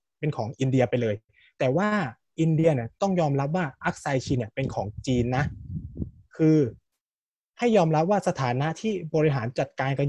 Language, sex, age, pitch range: Thai, male, 20-39, 120-160 Hz